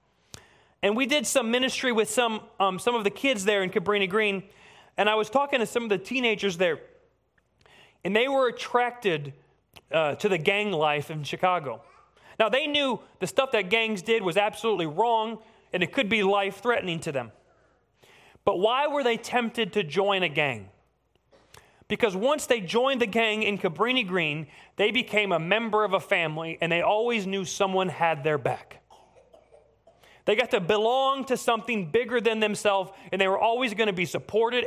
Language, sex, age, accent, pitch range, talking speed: English, male, 30-49, American, 180-230 Hz, 180 wpm